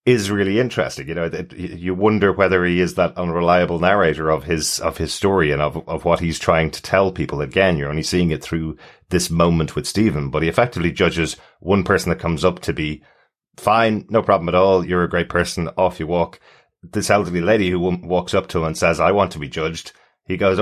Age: 30-49